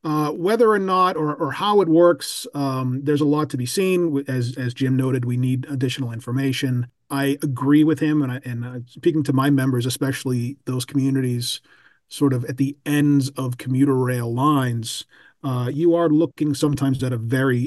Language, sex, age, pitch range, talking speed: English, male, 40-59, 130-155 Hz, 185 wpm